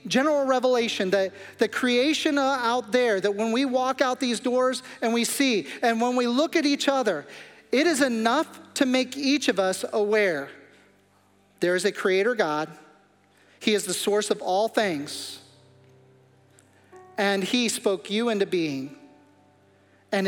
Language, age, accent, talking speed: English, 40-59, American, 155 wpm